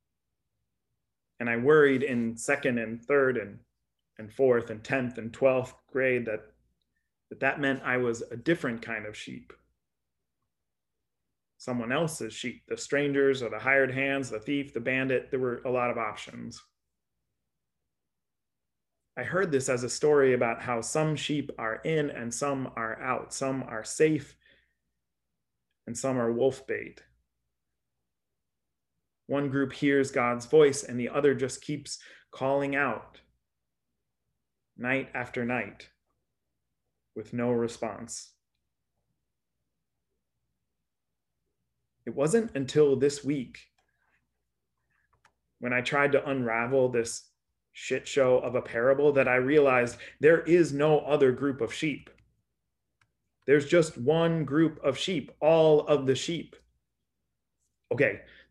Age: 30-49